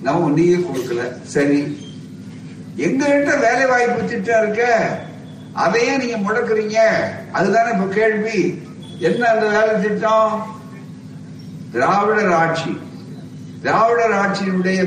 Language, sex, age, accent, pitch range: Tamil, male, 60-79, native, 170-220 Hz